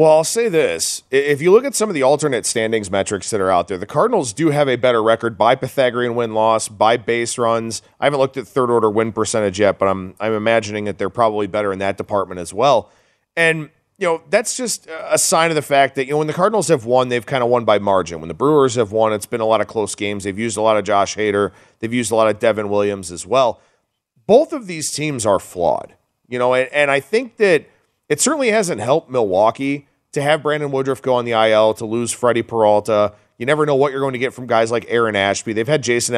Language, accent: English, American